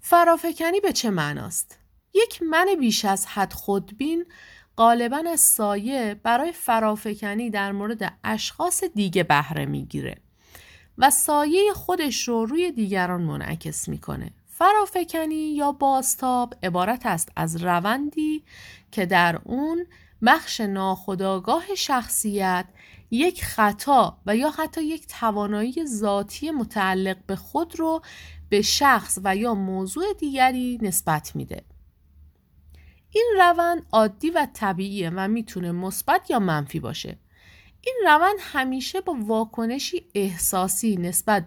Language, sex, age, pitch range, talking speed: Persian, female, 30-49, 185-310 Hz, 115 wpm